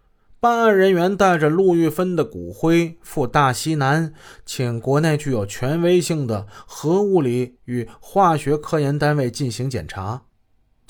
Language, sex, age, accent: Chinese, male, 20-39, native